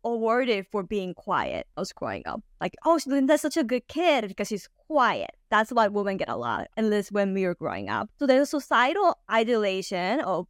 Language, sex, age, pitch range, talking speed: English, female, 20-39, 200-270 Hz, 200 wpm